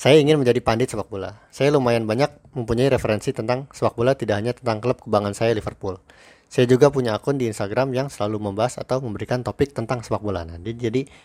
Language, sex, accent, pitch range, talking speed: Indonesian, male, native, 110-135 Hz, 195 wpm